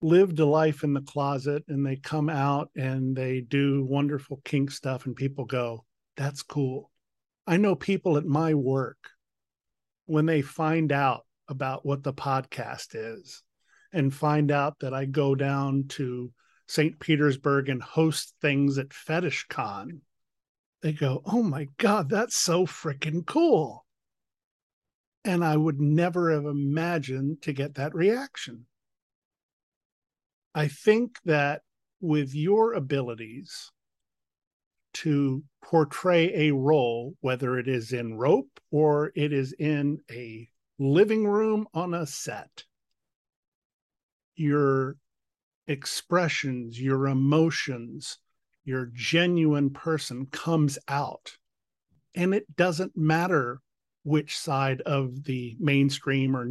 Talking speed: 120 wpm